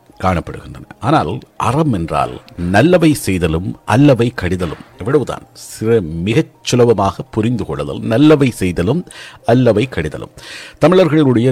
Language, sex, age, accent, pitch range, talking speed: Tamil, male, 50-69, native, 90-145 Hz, 90 wpm